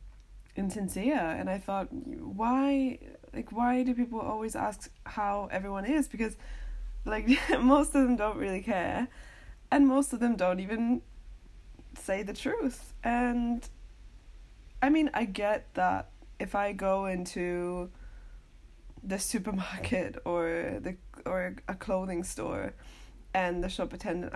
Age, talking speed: 20-39, 130 wpm